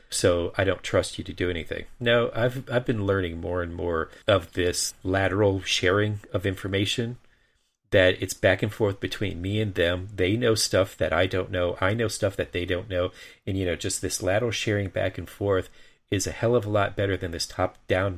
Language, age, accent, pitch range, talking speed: English, 40-59, American, 95-120 Hz, 220 wpm